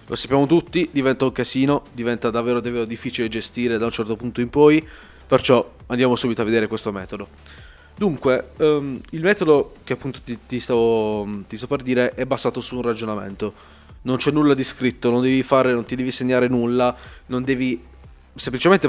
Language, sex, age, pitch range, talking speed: Italian, male, 20-39, 120-140 Hz, 185 wpm